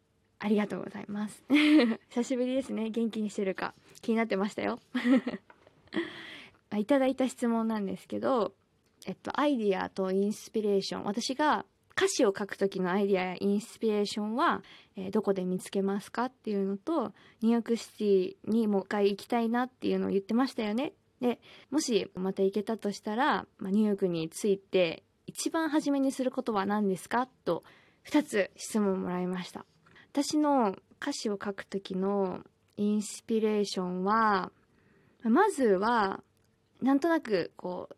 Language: Japanese